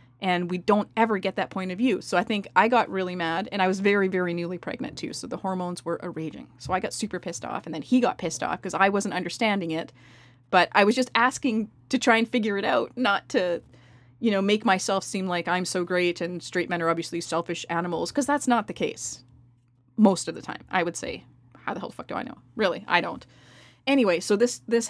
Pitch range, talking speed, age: 170-215 Hz, 245 wpm, 20-39